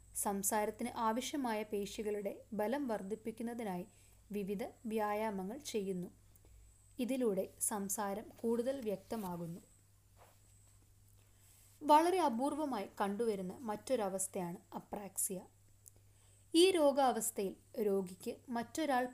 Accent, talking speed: native, 65 wpm